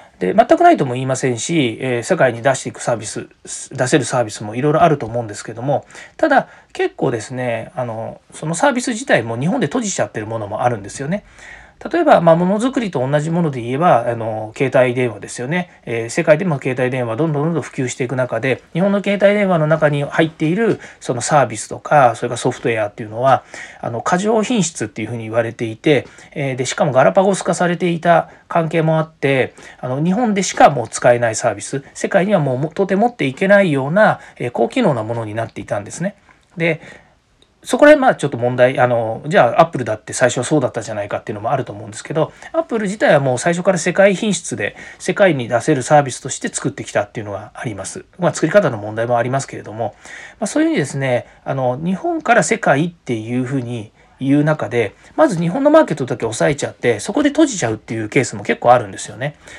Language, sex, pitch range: Japanese, male, 125-190 Hz